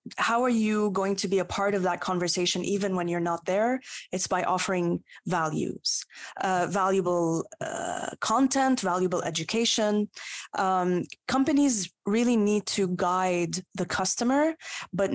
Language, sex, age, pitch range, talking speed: English, female, 20-39, 180-225 Hz, 140 wpm